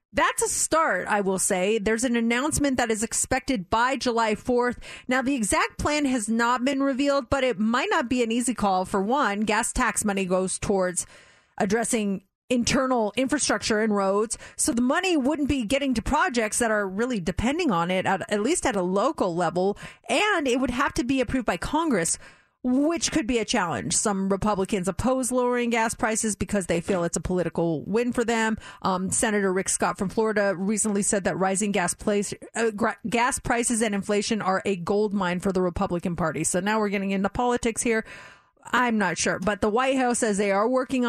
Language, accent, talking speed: English, American, 195 wpm